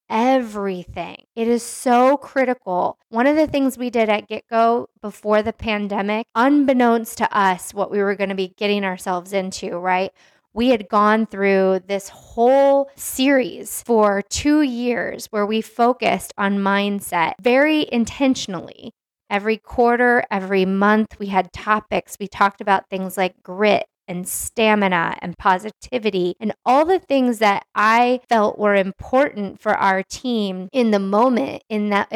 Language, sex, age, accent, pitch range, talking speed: English, female, 20-39, American, 200-245 Hz, 150 wpm